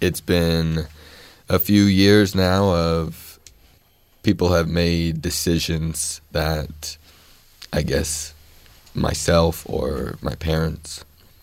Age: 20-39